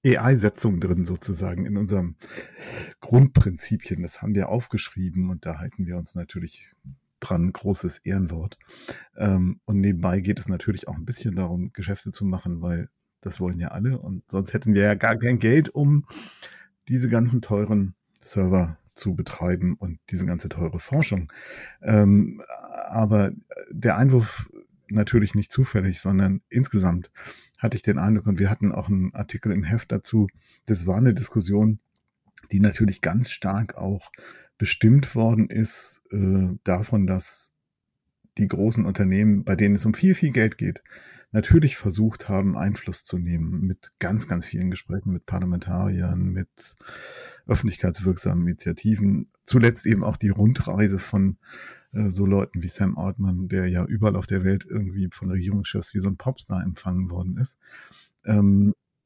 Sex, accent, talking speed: male, German, 150 wpm